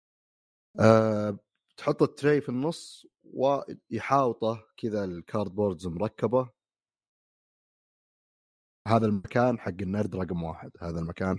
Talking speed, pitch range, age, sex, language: 90 wpm, 90-125 Hz, 30-49, male, Arabic